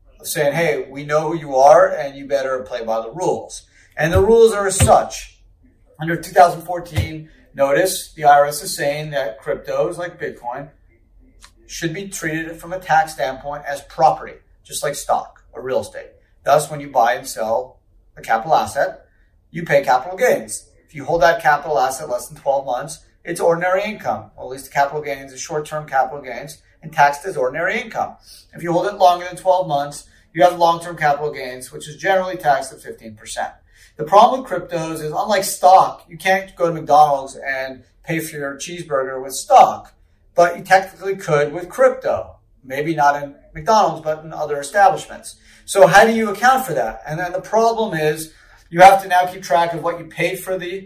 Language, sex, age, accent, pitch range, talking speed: English, male, 30-49, American, 140-180 Hz, 190 wpm